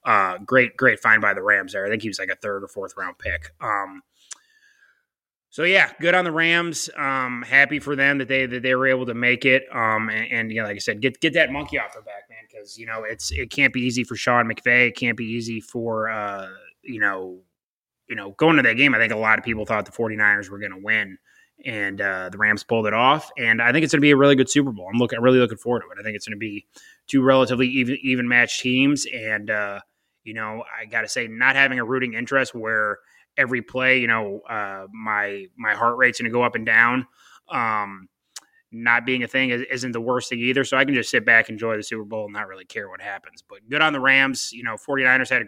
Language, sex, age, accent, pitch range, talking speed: English, male, 20-39, American, 110-130 Hz, 260 wpm